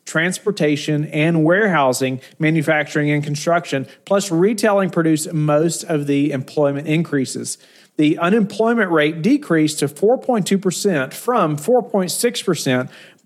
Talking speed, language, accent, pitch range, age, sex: 100 wpm, English, American, 140-180 Hz, 40-59, male